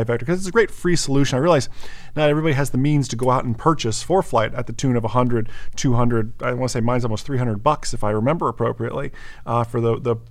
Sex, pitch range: male, 120-155 Hz